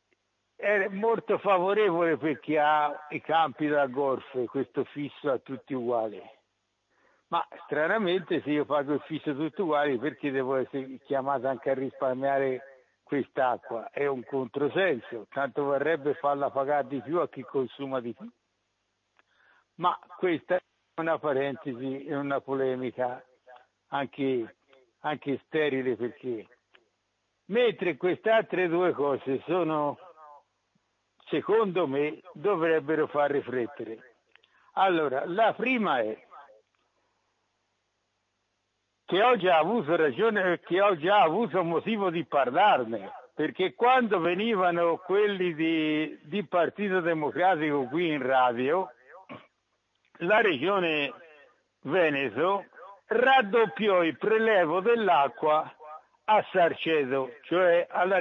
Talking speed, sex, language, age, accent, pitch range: 110 wpm, male, Italian, 60-79, native, 135-180 Hz